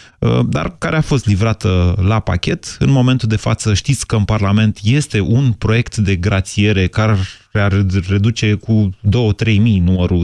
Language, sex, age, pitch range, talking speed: Romanian, male, 30-49, 100-135 Hz, 150 wpm